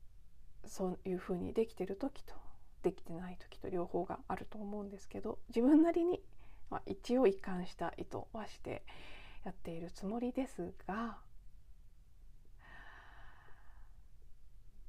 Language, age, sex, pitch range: Japanese, 40-59, female, 170-235 Hz